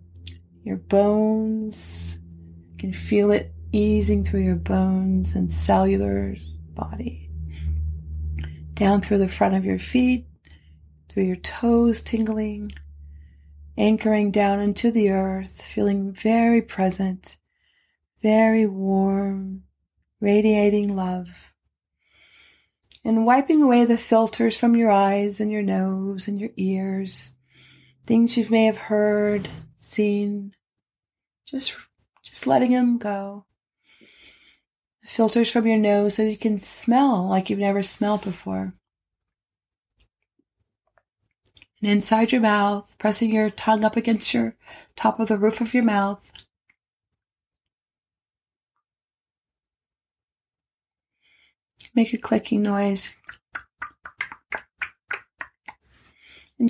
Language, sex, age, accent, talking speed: English, female, 30-49, American, 100 wpm